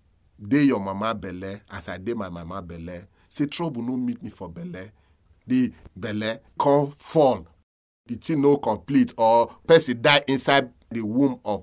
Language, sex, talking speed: English, male, 160 wpm